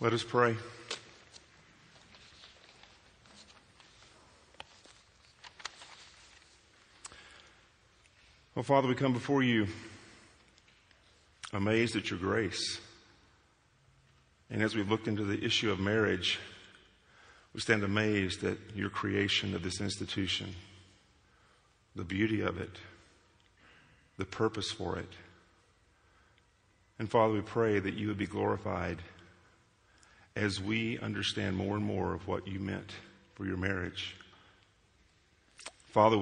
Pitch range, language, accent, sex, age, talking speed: 95-110 Hz, English, American, male, 50-69, 105 wpm